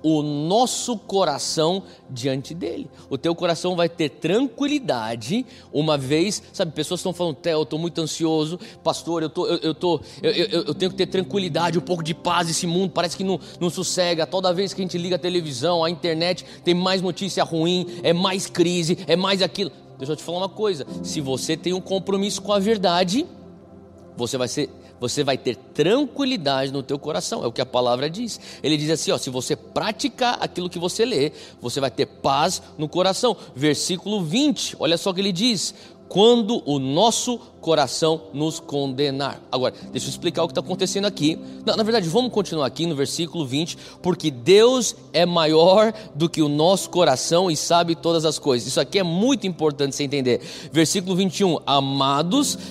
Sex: male